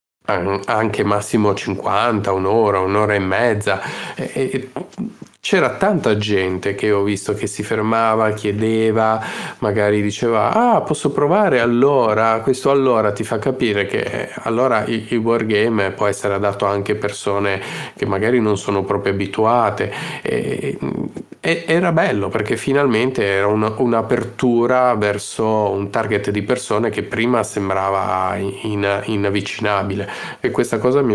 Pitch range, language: 100-115 Hz, Italian